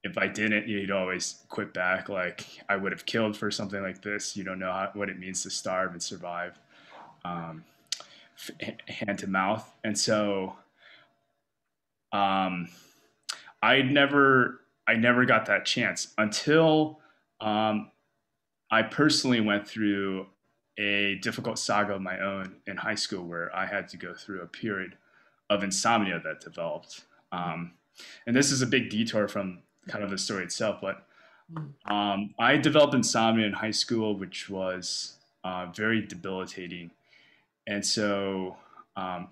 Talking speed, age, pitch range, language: 145 wpm, 20-39, 95-115 Hz, English